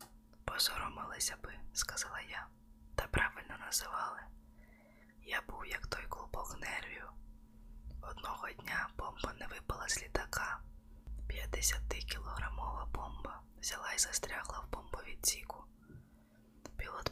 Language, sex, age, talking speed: Ukrainian, female, 20-39, 100 wpm